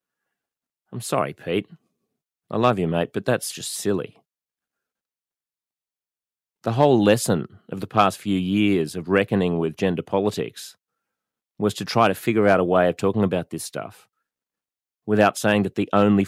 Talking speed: 155 wpm